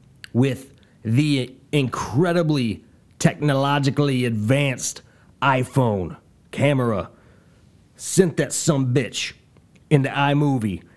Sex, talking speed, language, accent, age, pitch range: male, 70 wpm, English, American, 30-49, 105-145 Hz